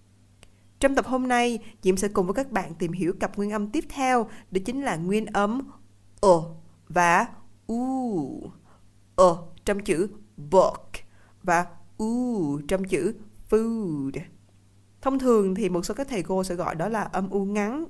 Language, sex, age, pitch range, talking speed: Vietnamese, female, 20-39, 175-220 Hz, 170 wpm